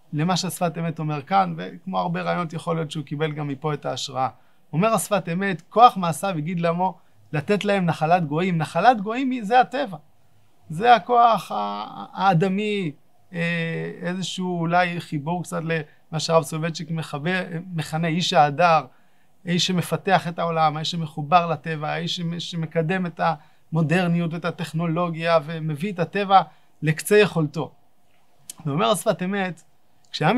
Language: Hebrew